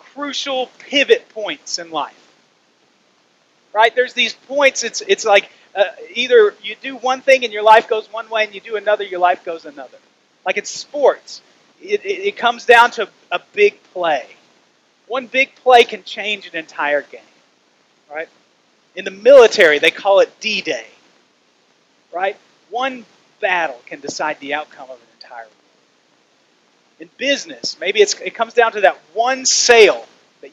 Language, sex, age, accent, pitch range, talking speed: English, male, 40-59, American, 195-280 Hz, 165 wpm